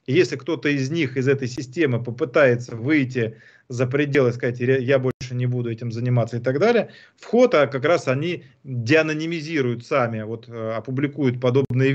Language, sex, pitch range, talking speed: Russian, male, 120-145 Hz, 150 wpm